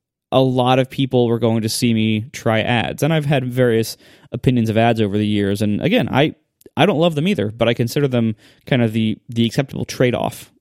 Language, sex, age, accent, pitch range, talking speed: English, male, 20-39, American, 110-140 Hz, 220 wpm